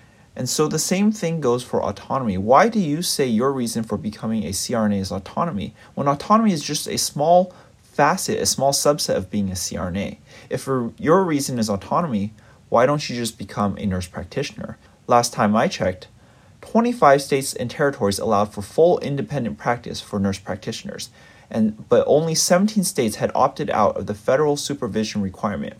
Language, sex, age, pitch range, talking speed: English, male, 30-49, 100-150 Hz, 175 wpm